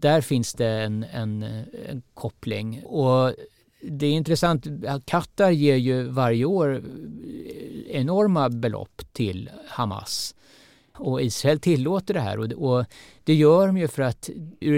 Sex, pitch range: male, 110-150 Hz